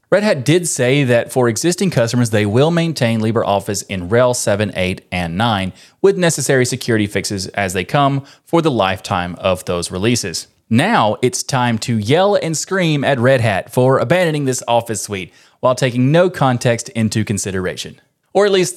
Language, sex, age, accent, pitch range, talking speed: English, male, 20-39, American, 105-140 Hz, 175 wpm